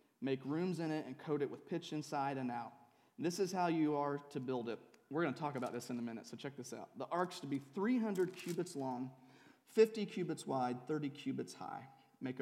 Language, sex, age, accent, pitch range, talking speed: English, male, 30-49, American, 125-150 Hz, 230 wpm